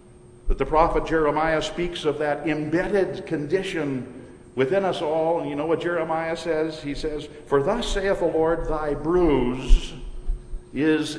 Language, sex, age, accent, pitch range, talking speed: English, male, 50-69, American, 135-175 Hz, 150 wpm